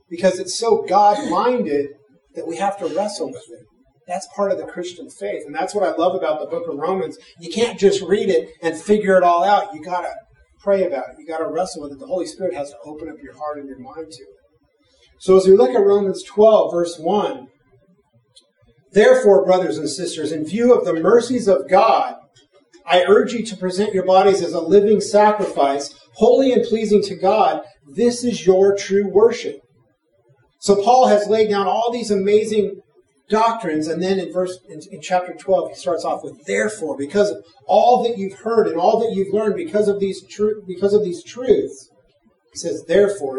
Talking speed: 205 wpm